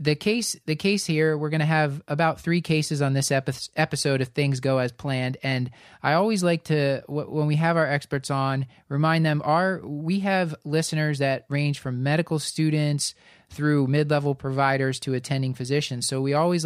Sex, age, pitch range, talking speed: male, 20-39, 130-150 Hz, 195 wpm